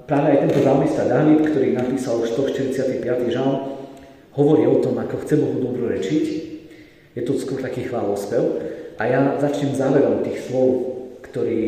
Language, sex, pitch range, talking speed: Slovak, male, 115-150 Hz, 150 wpm